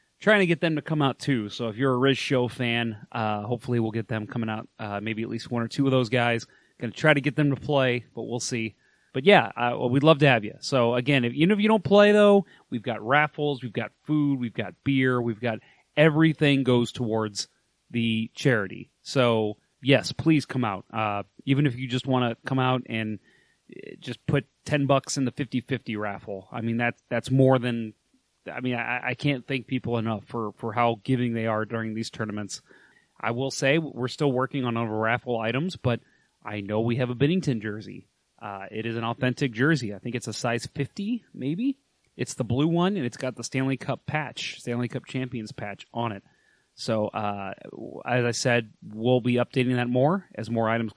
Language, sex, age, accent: English, male, 30-49, American